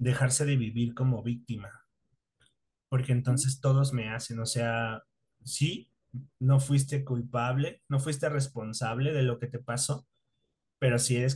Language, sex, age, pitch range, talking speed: Spanish, male, 30-49, 120-135 Hz, 145 wpm